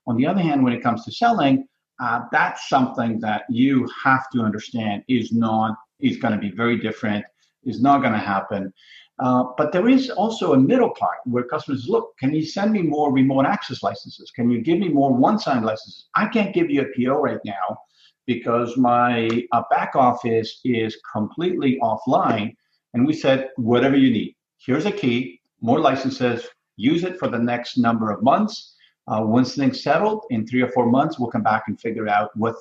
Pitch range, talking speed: 115-155 Hz, 195 wpm